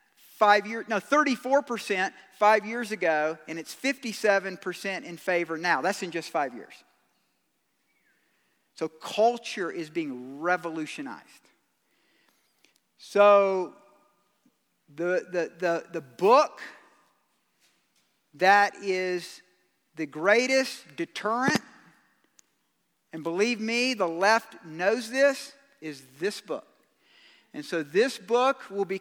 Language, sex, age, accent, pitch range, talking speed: English, male, 50-69, American, 170-225 Hz, 105 wpm